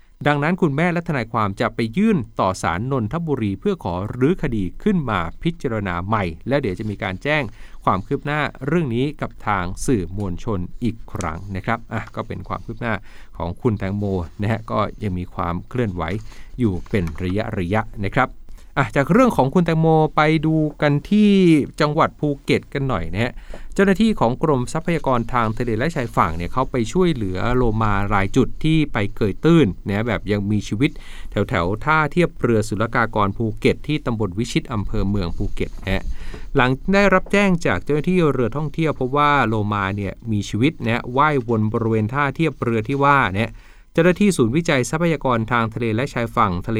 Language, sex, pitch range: Thai, male, 100-145 Hz